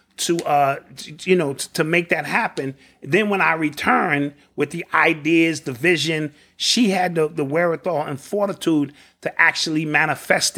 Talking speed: 160 wpm